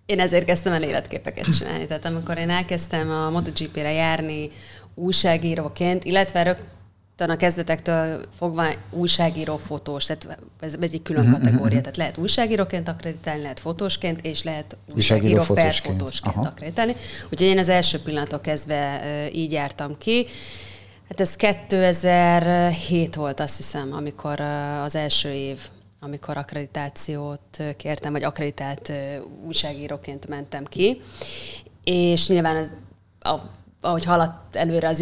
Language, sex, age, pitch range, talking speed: Hungarian, female, 30-49, 145-175 Hz, 120 wpm